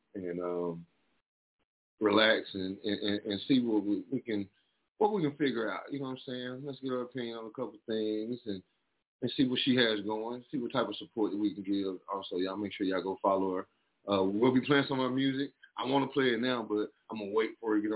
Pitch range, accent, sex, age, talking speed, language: 95-125 Hz, American, male, 30-49, 250 wpm, English